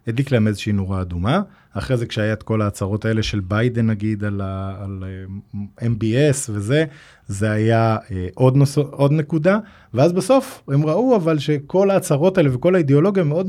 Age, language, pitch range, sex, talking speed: 20-39, Hebrew, 110-150 Hz, male, 160 wpm